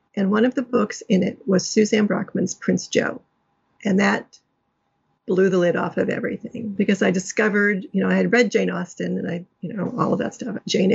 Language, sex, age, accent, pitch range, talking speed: English, female, 50-69, American, 190-230 Hz, 215 wpm